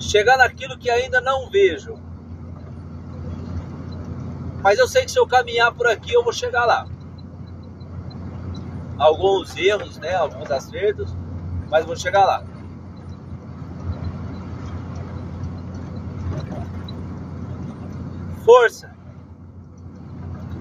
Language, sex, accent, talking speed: Portuguese, male, Brazilian, 85 wpm